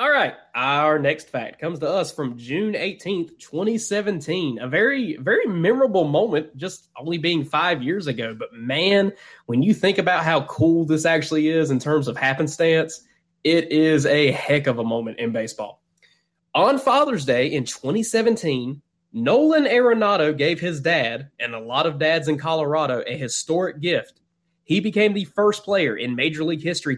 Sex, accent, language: male, American, English